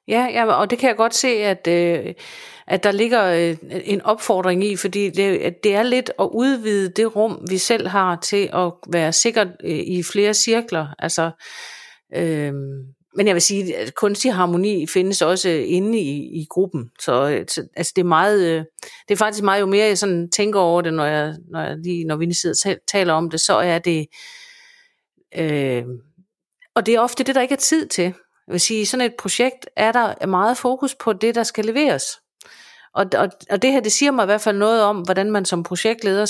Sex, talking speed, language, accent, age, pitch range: female, 210 wpm, Danish, native, 50-69, 175-225 Hz